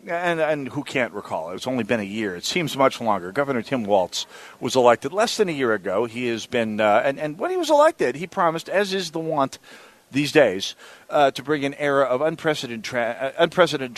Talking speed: 220 wpm